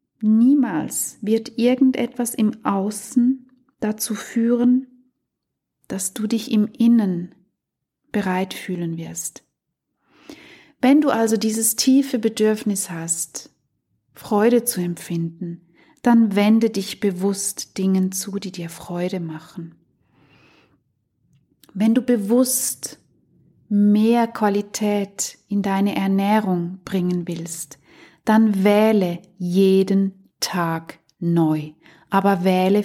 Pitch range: 185-230 Hz